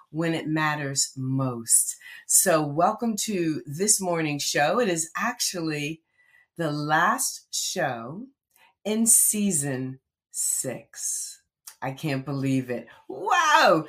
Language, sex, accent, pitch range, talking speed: English, female, American, 150-220 Hz, 105 wpm